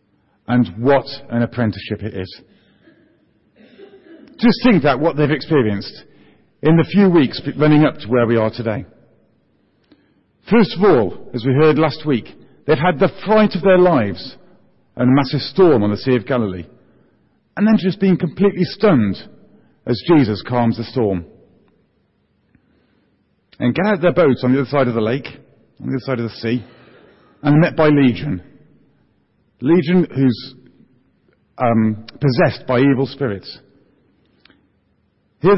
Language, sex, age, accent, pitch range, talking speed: English, male, 40-59, British, 120-175 Hz, 150 wpm